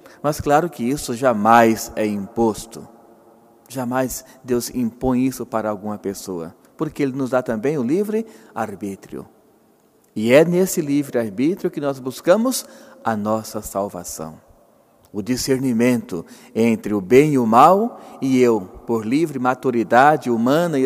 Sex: male